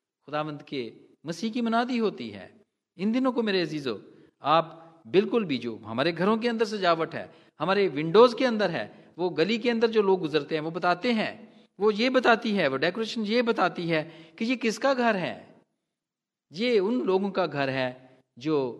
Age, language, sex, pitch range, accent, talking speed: 40-59, Hindi, male, 140-215 Hz, native, 190 wpm